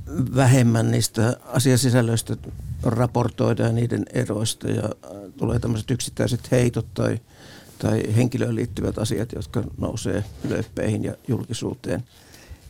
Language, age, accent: Finnish, 60-79, native